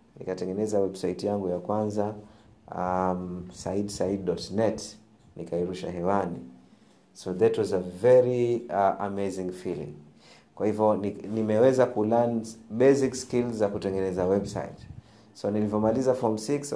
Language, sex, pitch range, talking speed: Swahili, male, 95-115 Hz, 110 wpm